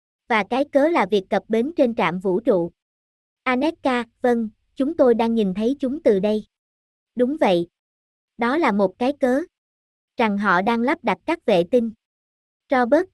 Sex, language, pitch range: male, Vietnamese, 215-270 Hz